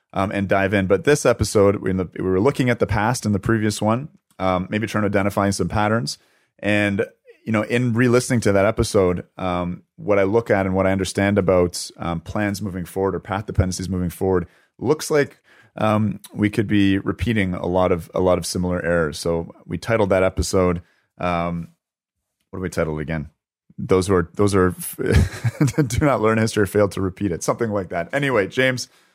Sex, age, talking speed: male, 30-49, 205 wpm